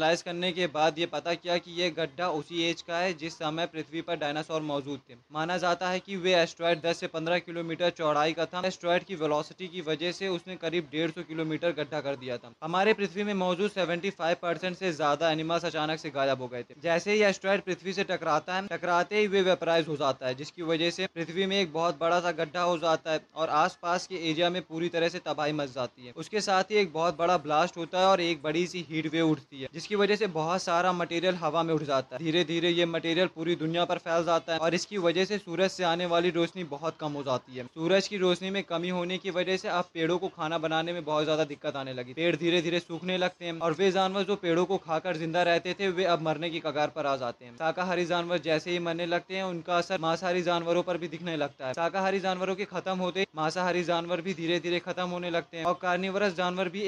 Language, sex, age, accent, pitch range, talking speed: Hindi, male, 20-39, native, 160-180 Hz, 245 wpm